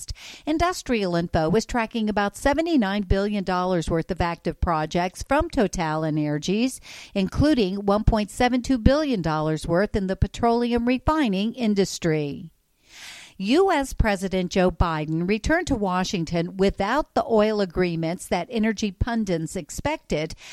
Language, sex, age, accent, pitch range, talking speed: English, female, 50-69, American, 180-235 Hz, 110 wpm